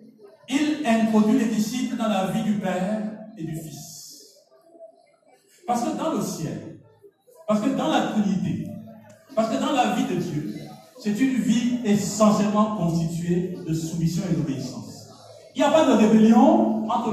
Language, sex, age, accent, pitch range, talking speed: French, male, 50-69, French, 215-270 Hz, 160 wpm